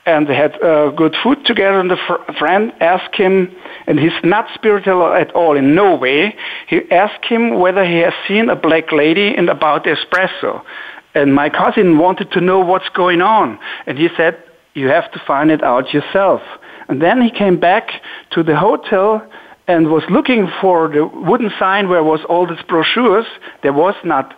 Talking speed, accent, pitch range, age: 190 wpm, German, 155-200 Hz, 60-79